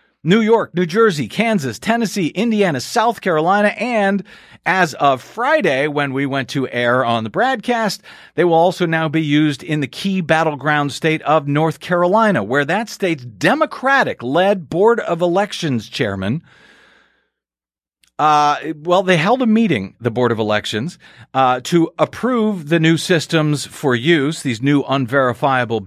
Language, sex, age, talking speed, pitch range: English, male, 50-69, 150 wpm, 125-195 Hz